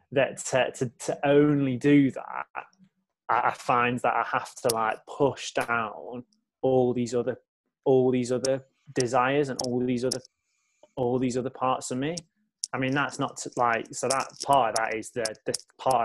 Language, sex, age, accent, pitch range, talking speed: English, male, 20-39, British, 110-130 Hz, 180 wpm